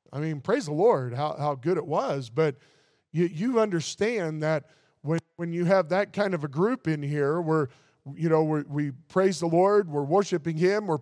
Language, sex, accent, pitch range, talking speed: English, male, American, 145-175 Hz, 200 wpm